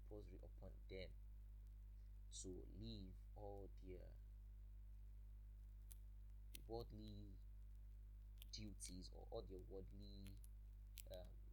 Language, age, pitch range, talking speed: English, 20-39, 95-100 Hz, 75 wpm